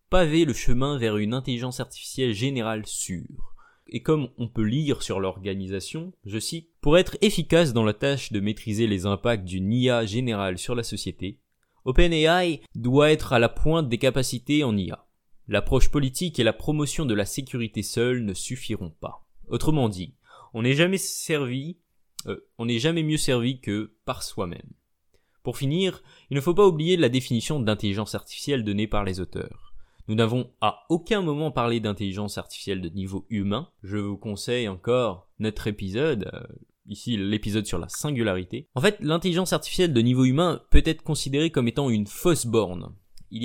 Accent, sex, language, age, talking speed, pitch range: French, male, French, 20-39, 175 wpm, 105-145 Hz